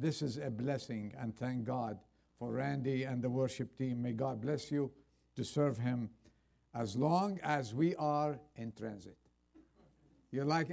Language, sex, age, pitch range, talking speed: English, male, 50-69, 120-175 Hz, 160 wpm